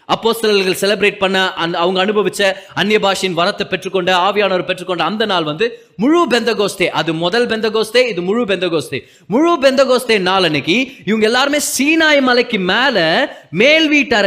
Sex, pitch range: male, 195-250 Hz